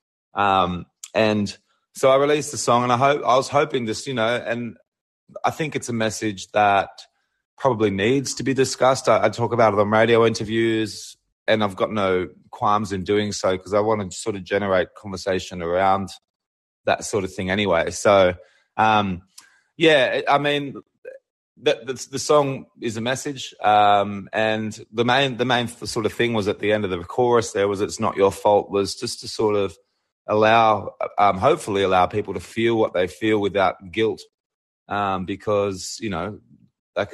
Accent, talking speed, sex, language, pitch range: Australian, 185 wpm, male, English, 100-120 Hz